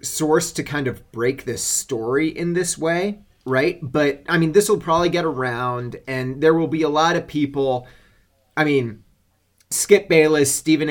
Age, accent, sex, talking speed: 30-49, American, male, 175 wpm